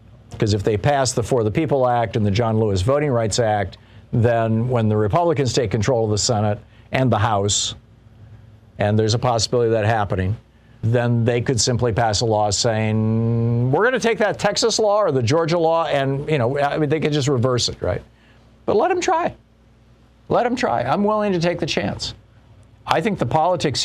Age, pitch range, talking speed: 50-69, 110-145 Hz, 205 wpm